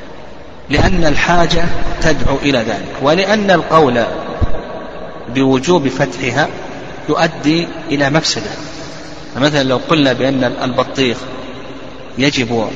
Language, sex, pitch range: Arabic, male, 130-155 Hz